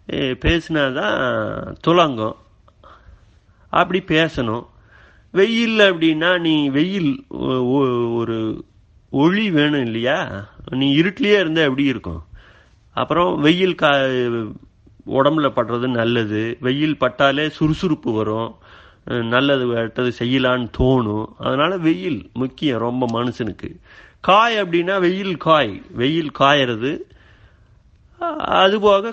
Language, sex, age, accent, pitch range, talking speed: Tamil, male, 30-49, native, 115-160 Hz, 85 wpm